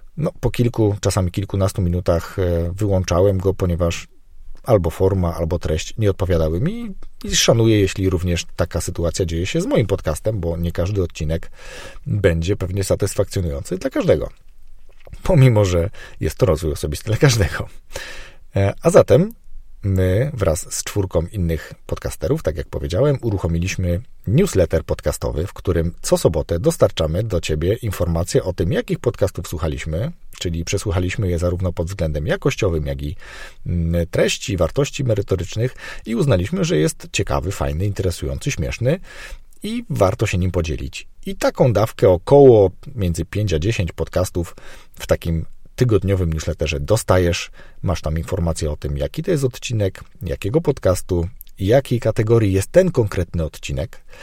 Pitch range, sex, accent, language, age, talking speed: 85-110 Hz, male, native, Polish, 40-59, 140 wpm